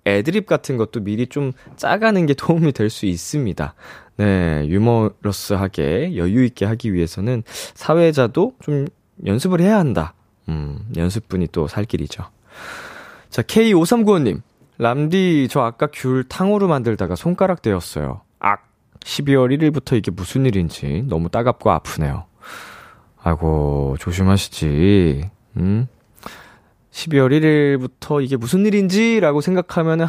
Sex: male